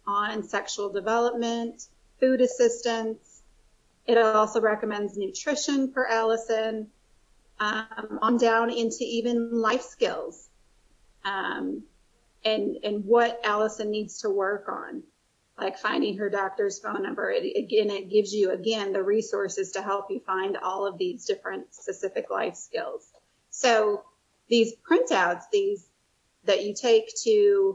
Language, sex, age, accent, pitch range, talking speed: English, female, 30-49, American, 210-270 Hz, 130 wpm